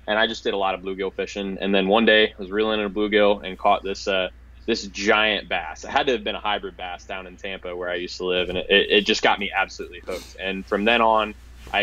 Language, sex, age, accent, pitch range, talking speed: English, male, 20-39, American, 95-105 Hz, 280 wpm